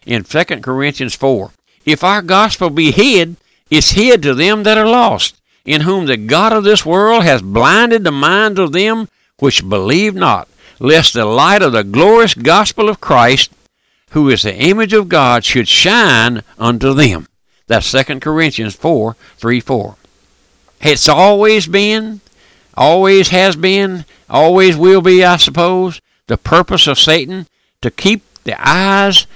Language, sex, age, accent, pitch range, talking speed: English, male, 60-79, American, 140-205 Hz, 155 wpm